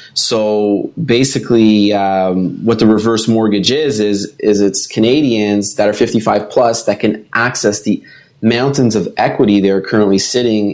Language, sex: English, male